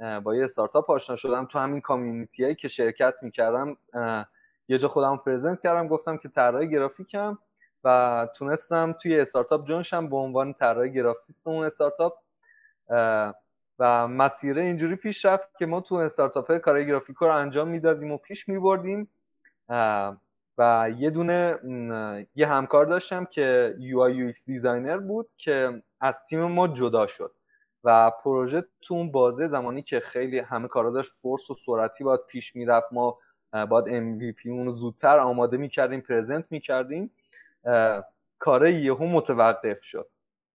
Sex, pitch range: male, 120-170 Hz